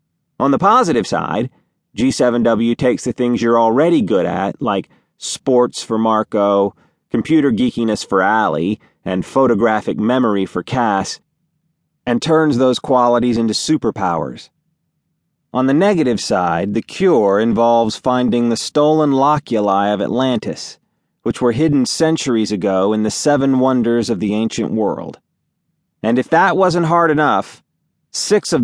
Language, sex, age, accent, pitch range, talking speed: English, male, 30-49, American, 110-150 Hz, 135 wpm